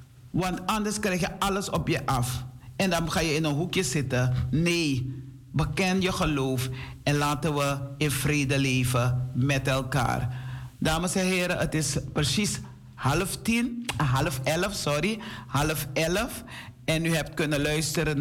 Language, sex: Dutch, male